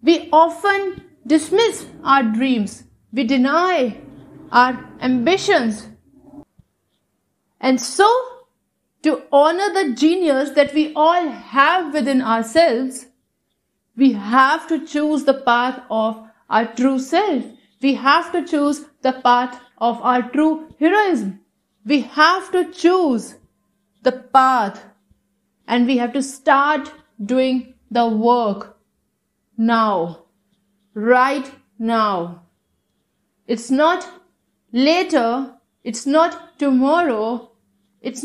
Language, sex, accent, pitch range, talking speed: English, female, Indian, 230-305 Hz, 100 wpm